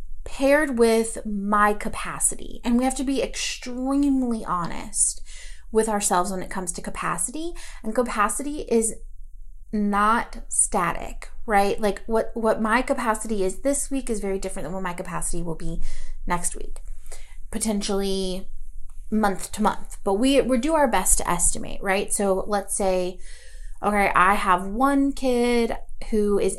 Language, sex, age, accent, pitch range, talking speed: English, female, 30-49, American, 190-245 Hz, 150 wpm